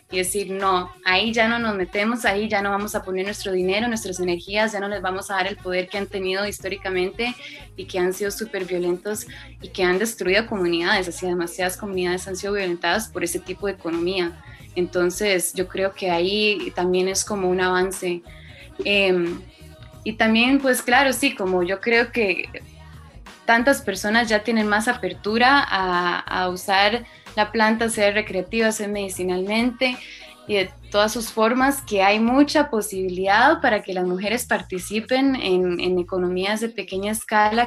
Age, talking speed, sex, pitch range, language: 20-39, 170 wpm, female, 180-215 Hz, Spanish